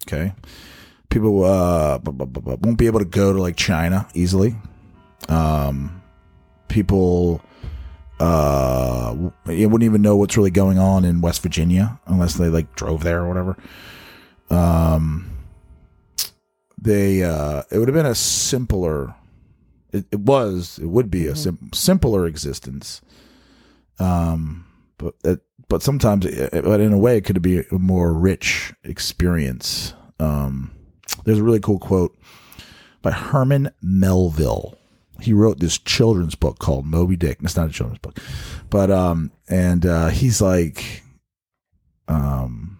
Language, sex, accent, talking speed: English, male, American, 140 wpm